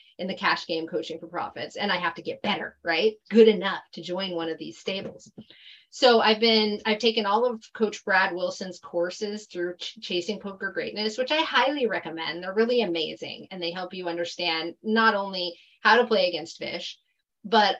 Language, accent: English, American